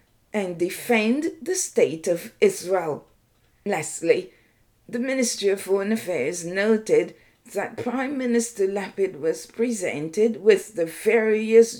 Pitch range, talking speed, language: 190-260 Hz, 110 wpm, English